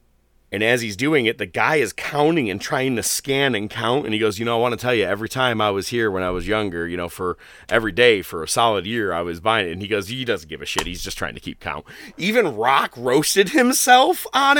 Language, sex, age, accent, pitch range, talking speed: English, male, 30-49, American, 95-140 Hz, 270 wpm